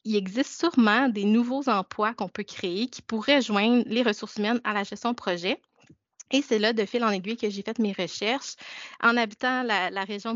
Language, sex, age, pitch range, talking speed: French, female, 30-49, 195-225 Hz, 215 wpm